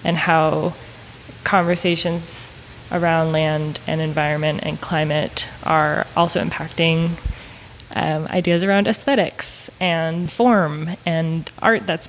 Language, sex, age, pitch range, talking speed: English, female, 20-39, 160-185 Hz, 105 wpm